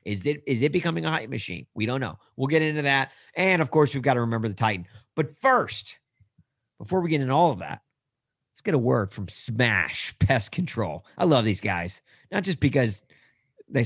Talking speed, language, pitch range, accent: 210 wpm, English, 110-155 Hz, American